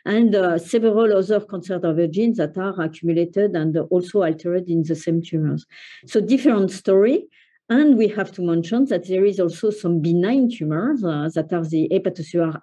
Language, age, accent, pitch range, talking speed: English, 50-69, French, 170-215 Hz, 170 wpm